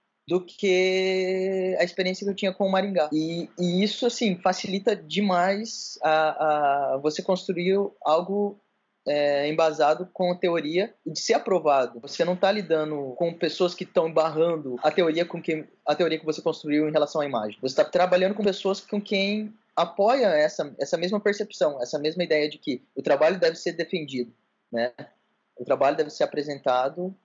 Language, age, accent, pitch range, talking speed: Portuguese, 20-39, Brazilian, 150-190 Hz, 175 wpm